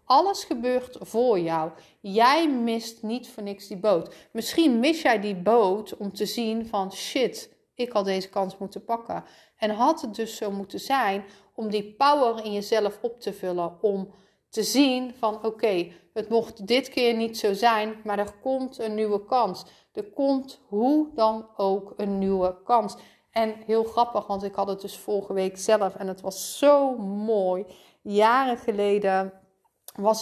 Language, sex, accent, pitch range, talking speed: Dutch, female, Dutch, 200-245 Hz, 175 wpm